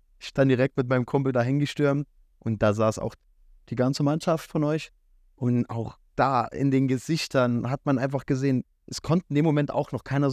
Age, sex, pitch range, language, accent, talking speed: 20-39, male, 105-130 Hz, German, German, 200 wpm